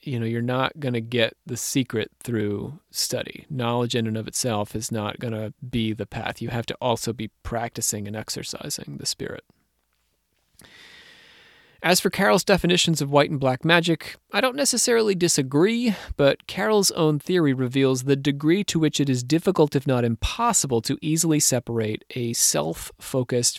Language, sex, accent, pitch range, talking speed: English, male, American, 115-155 Hz, 170 wpm